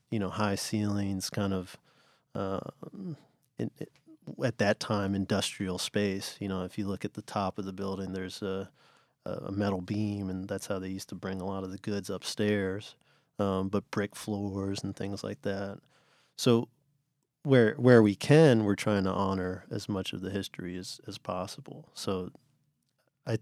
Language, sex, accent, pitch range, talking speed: English, male, American, 100-115 Hz, 180 wpm